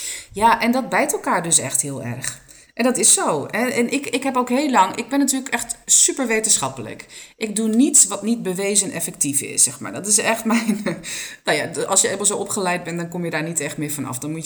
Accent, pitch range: Dutch, 160-225 Hz